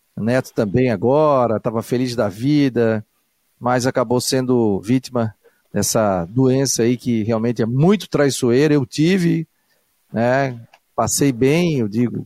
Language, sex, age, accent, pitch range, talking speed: Portuguese, male, 50-69, Brazilian, 115-140 Hz, 125 wpm